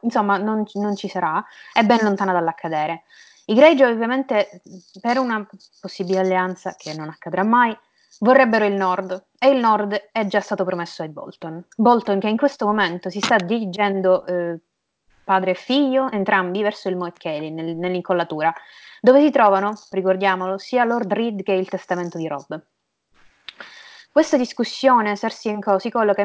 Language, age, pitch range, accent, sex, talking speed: Italian, 20-39, 180-225 Hz, native, female, 155 wpm